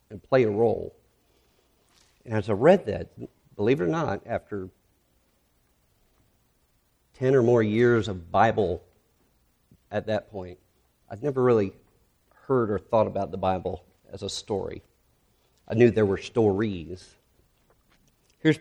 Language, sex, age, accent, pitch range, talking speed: English, male, 40-59, American, 105-130 Hz, 130 wpm